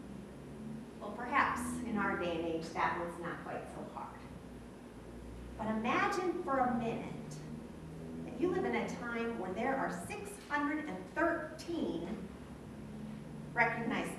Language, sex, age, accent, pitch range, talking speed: English, female, 40-59, American, 185-310 Hz, 125 wpm